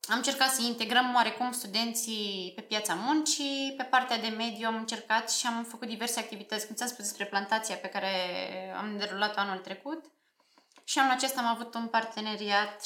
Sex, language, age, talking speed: female, Romanian, 20-39, 175 wpm